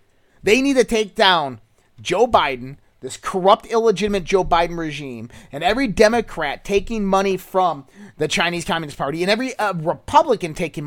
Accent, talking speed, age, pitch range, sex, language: American, 155 wpm, 30-49, 150-240 Hz, male, English